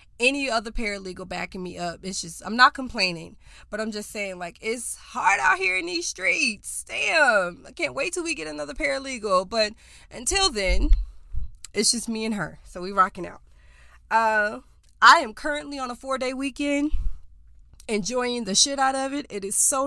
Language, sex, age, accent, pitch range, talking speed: English, female, 20-39, American, 190-255 Hz, 185 wpm